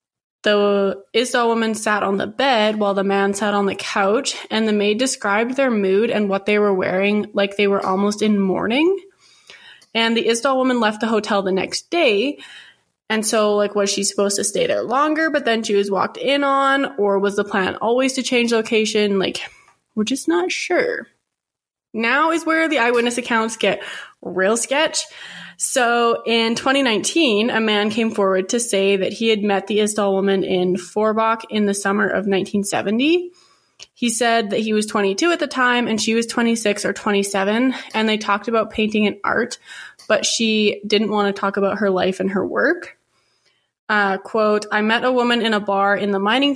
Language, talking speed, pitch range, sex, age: English, 190 wpm, 200-240 Hz, female, 20-39